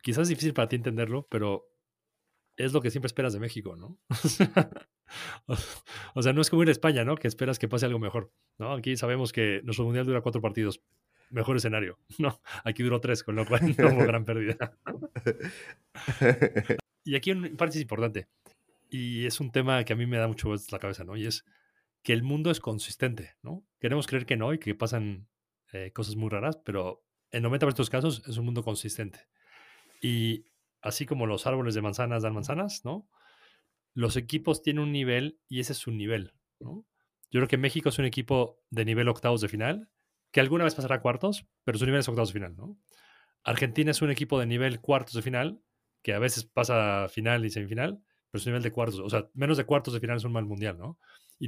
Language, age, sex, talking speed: Spanish, 30-49, male, 210 wpm